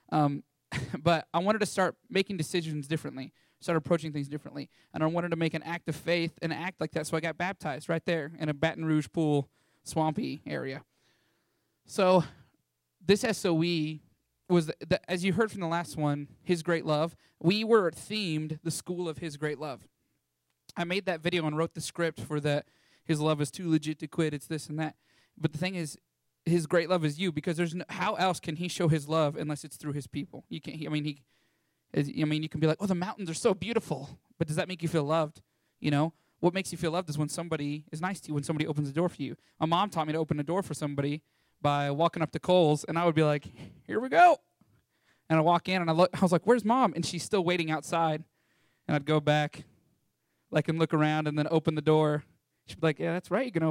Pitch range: 150-175 Hz